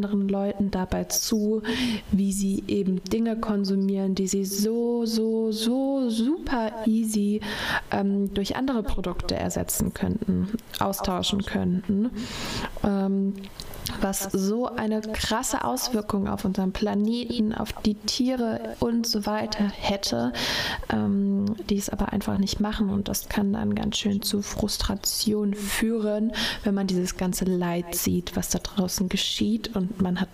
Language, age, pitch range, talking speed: German, 20-39, 190-220 Hz, 135 wpm